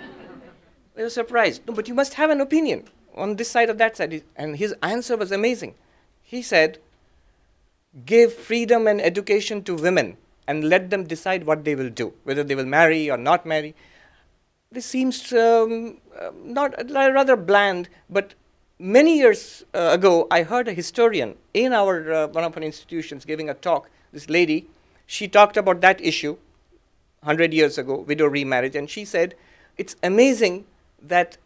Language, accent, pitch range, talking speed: English, Indian, 165-220 Hz, 170 wpm